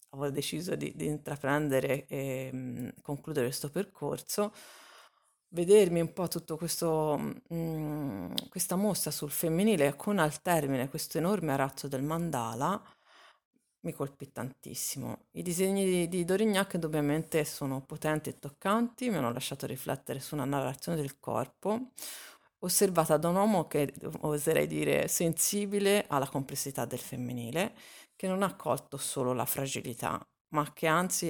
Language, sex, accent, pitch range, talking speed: Italian, female, native, 140-185 Hz, 135 wpm